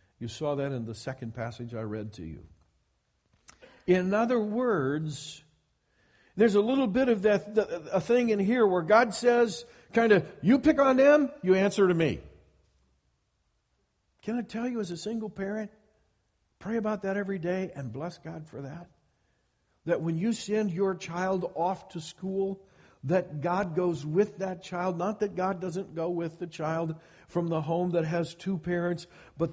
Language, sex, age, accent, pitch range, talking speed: English, male, 50-69, American, 125-190 Hz, 175 wpm